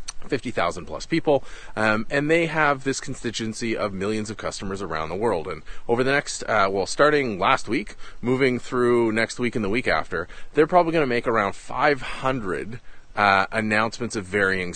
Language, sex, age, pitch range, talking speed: English, male, 30-49, 110-145 Hz, 180 wpm